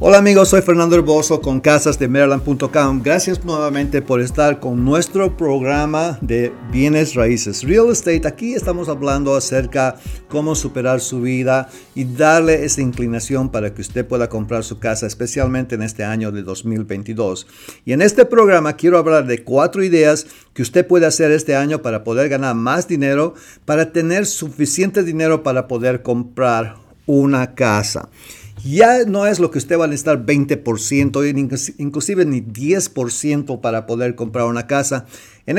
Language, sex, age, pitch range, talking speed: English, male, 50-69, 125-175 Hz, 160 wpm